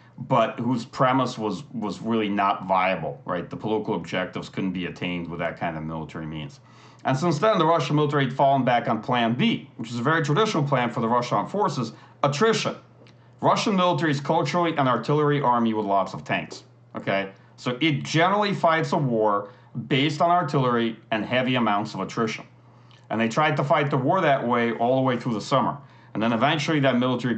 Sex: male